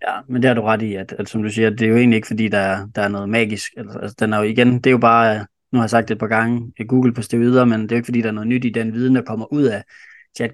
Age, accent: 20-39, native